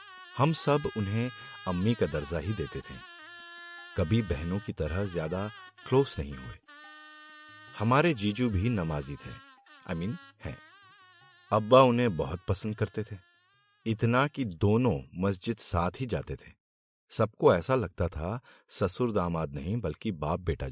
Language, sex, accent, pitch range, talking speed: Hindi, male, native, 80-120 Hz, 140 wpm